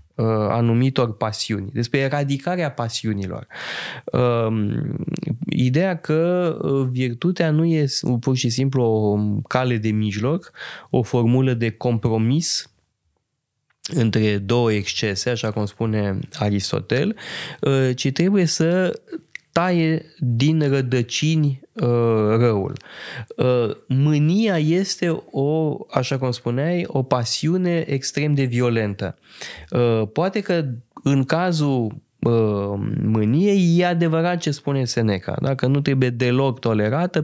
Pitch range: 120-160 Hz